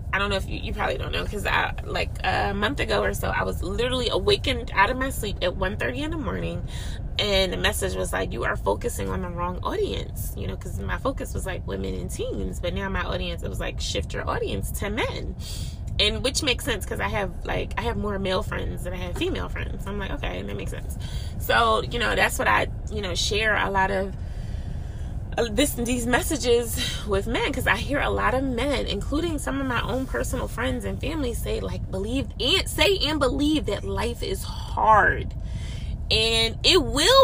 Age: 20-39